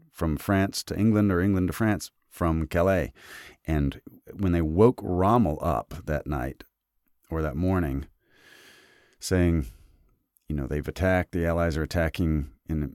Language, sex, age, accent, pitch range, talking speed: English, male, 40-59, American, 75-95 Hz, 145 wpm